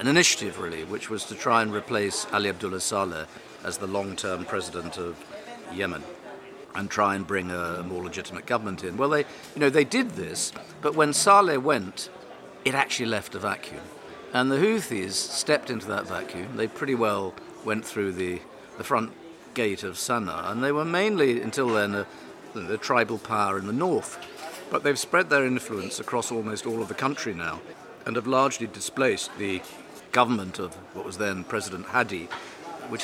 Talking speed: 180 wpm